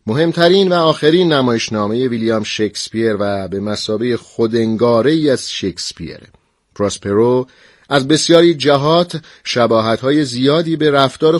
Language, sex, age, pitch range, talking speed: Persian, male, 40-59, 105-145 Hz, 105 wpm